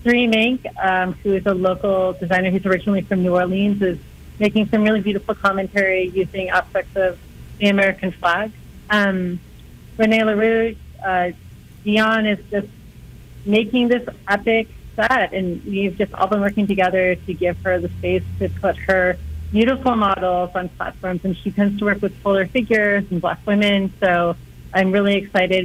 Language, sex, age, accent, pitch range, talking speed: English, female, 30-49, American, 185-210 Hz, 165 wpm